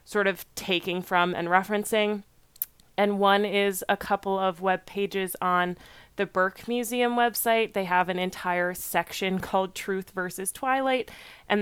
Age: 20-39